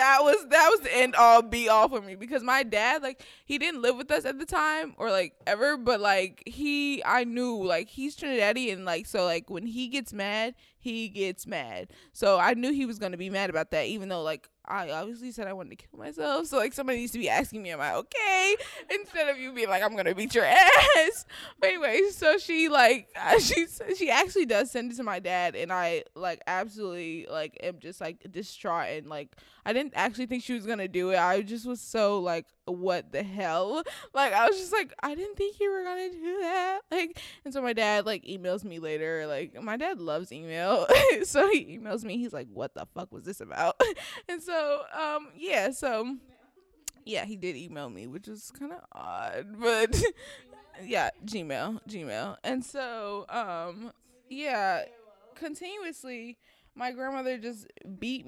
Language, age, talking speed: English, 20-39, 205 wpm